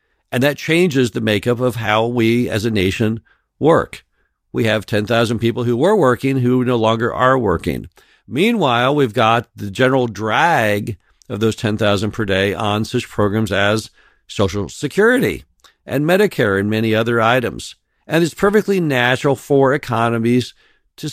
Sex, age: male, 50-69